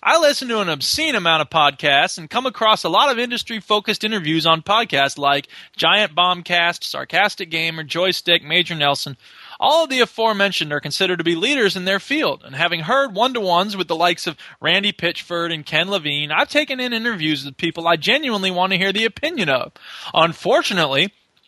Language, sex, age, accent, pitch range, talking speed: English, male, 20-39, American, 160-225 Hz, 185 wpm